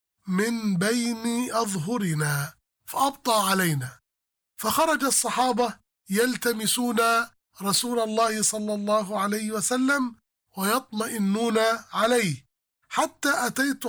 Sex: male